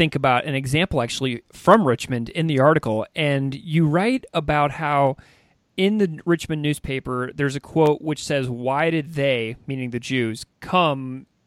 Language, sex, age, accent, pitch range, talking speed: English, male, 40-59, American, 130-165 Hz, 160 wpm